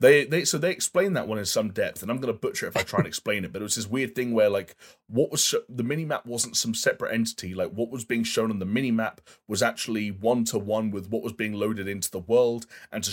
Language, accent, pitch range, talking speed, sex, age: English, British, 100-120 Hz, 285 wpm, male, 30-49